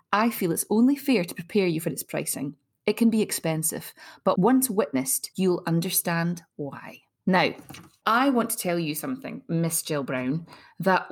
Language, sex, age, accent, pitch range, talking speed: English, female, 20-39, British, 160-215 Hz, 175 wpm